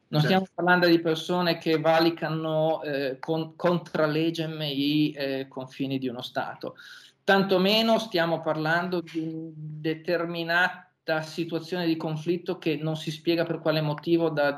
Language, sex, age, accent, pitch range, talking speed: Italian, male, 40-59, native, 140-165 Hz, 135 wpm